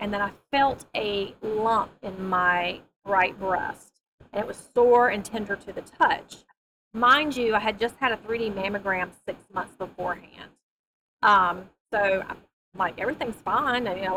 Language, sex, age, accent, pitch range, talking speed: English, female, 30-49, American, 200-250 Hz, 160 wpm